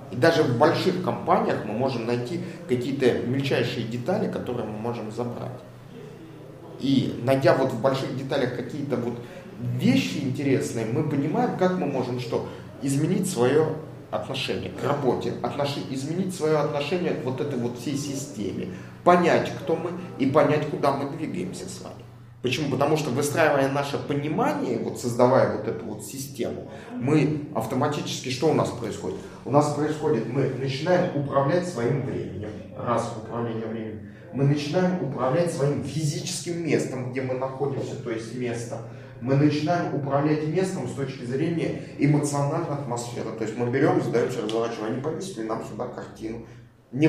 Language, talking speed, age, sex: Russian, 150 wpm, 30-49, male